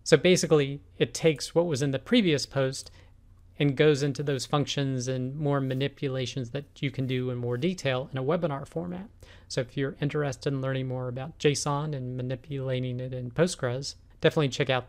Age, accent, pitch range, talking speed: 40-59, American, 125-145 Hz, 185 wpm